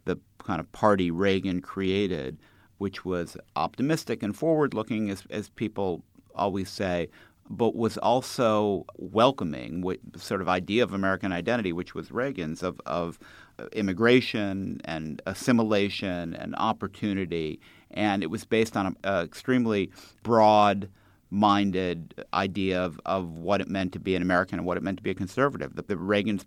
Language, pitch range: English, 85-105 Hz